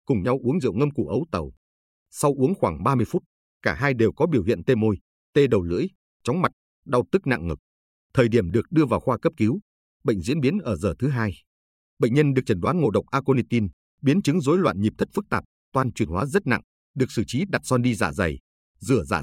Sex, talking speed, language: male, 235 wpm, Vietnamese